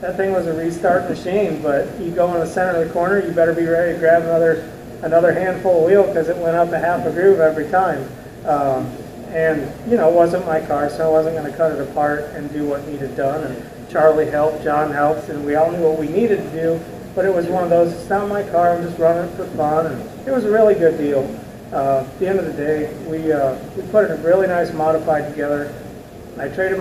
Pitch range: 140-165 Hz